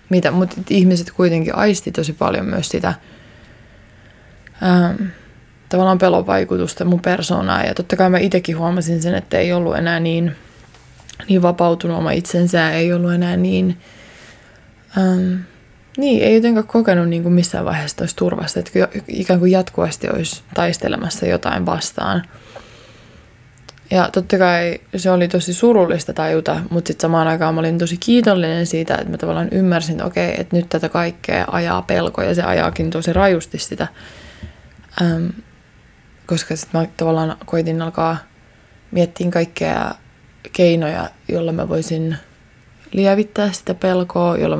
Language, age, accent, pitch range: Finnish, 20-39, native, 160-185 Hz